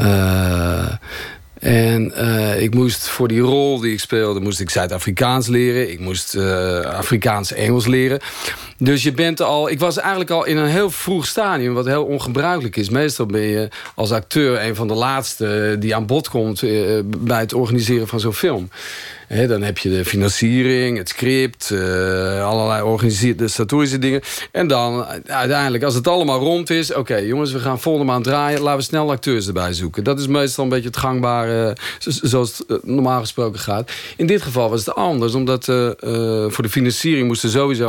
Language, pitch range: Dutch, 110-140 Hz